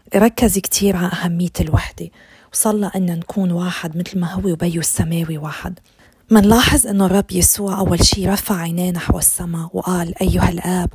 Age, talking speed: 20-39, 155 wpm